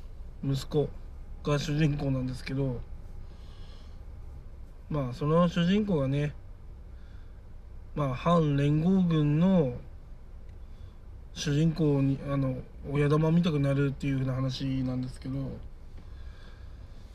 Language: Japanese